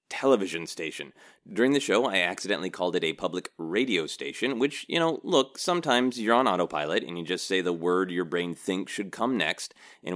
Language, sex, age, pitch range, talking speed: English, male, 30-49, 85-135 Hz, 200 wpm